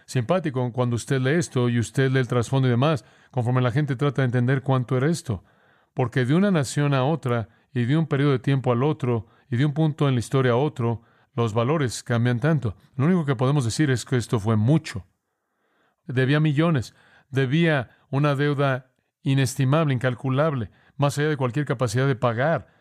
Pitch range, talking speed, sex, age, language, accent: 120-145 Hz, 190 wpm, male, 40-59, English, Mexican